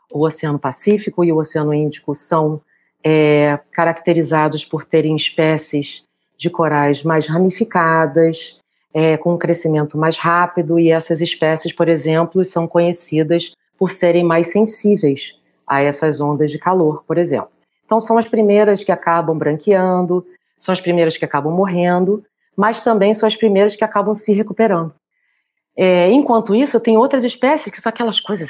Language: Portuguese